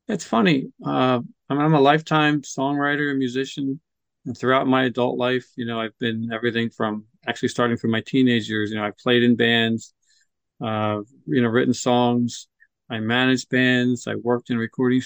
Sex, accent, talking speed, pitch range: male, American, 185 wpm, 115-130 Hz